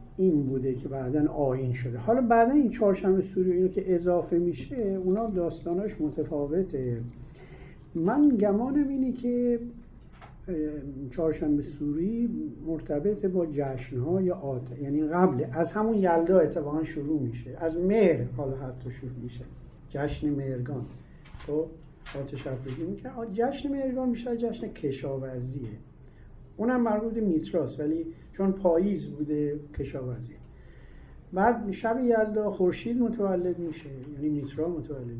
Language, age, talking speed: Persian, 50-69, 120 wpm